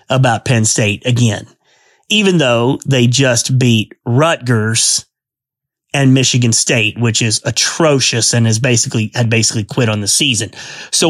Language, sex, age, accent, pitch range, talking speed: English, male, 30-49, American, 130-170 Hz, 140 wpm